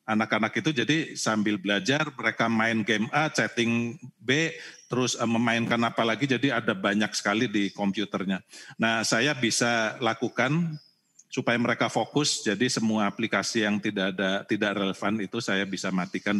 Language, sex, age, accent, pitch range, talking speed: Indonesian, male, 40-59, native, 100-115 Hz, 145 wpm